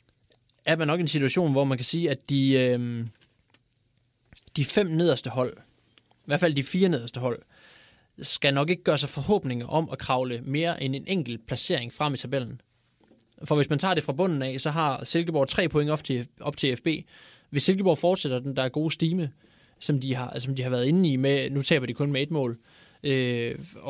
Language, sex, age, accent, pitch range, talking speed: Danish, male, 20-39, native, 125-150 Hz, 205 wpm